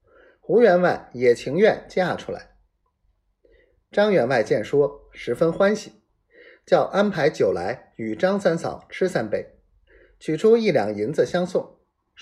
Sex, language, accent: male, Chinese, native